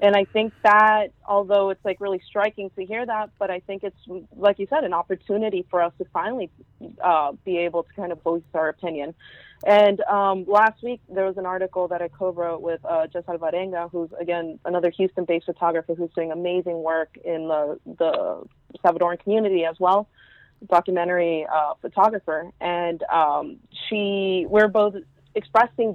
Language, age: English, 30-49